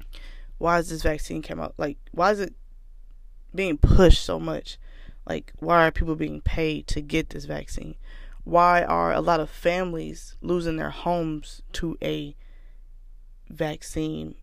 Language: English